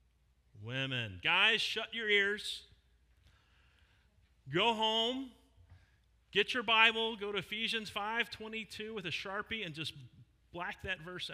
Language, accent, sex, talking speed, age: English, American, male, 120 wpm, 40-59